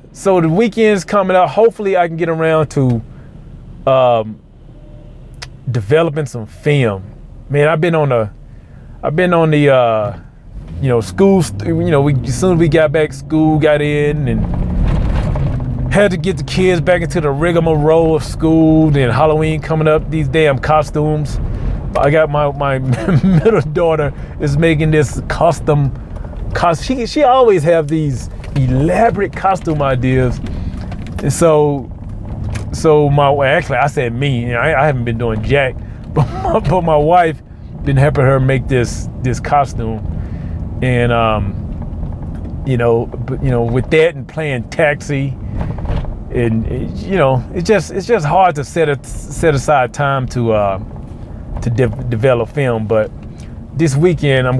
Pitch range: 120-160 Hz